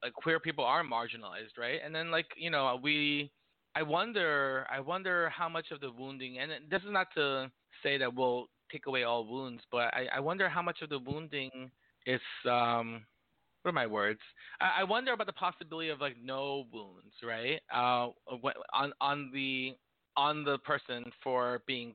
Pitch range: 120-155 Hz